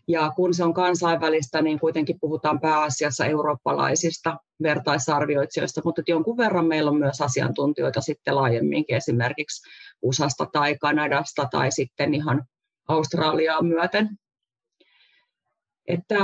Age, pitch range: 30-49, 150-170 Hz